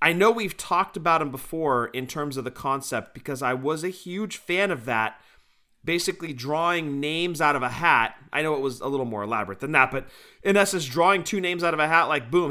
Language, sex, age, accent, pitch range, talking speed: English, male, 30-49, American, 135-165 Hz, 235 wpm